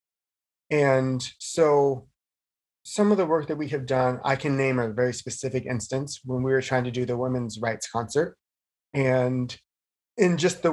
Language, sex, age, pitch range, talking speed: English, male, 30-49, 125-160 Hz, 175 wpm